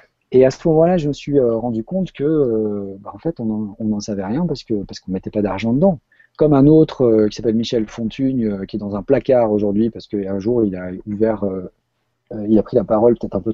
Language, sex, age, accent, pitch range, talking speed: French, male, 40-59, French, 105-140 Hz, 250 wpm